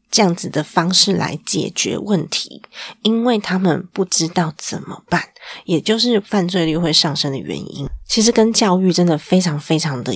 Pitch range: 155-210 Hz